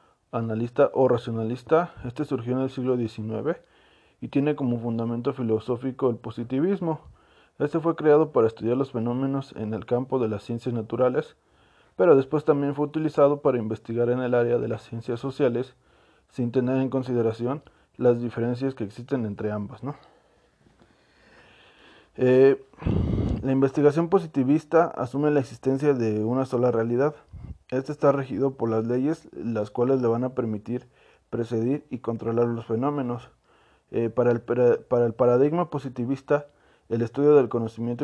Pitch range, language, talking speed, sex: 115-140 Hz, Spanish, 145 wpm, male